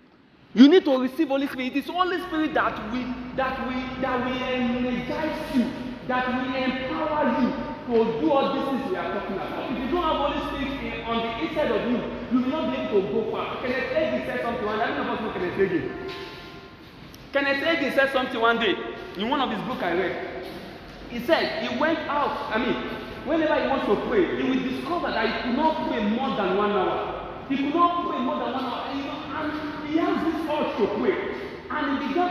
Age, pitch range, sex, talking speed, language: 40-59, 250-315 Hz, male, 225 wpm, English